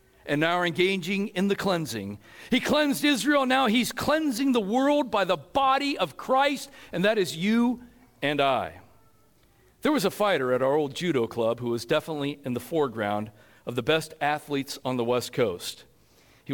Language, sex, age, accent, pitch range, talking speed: English, male, 50-69, American, 145-220 Hz, 180 wpm